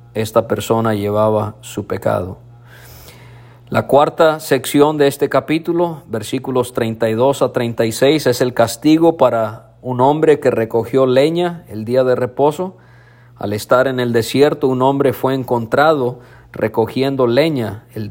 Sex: male